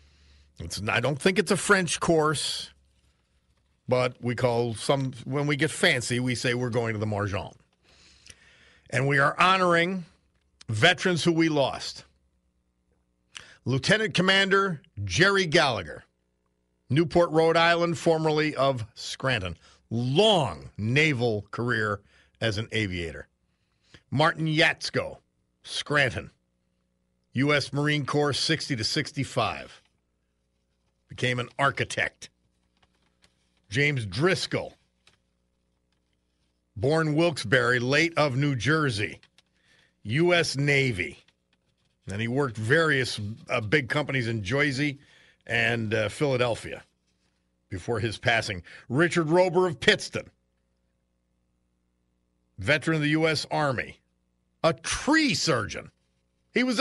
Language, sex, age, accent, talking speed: English, male, 50-69, American, 100 wpm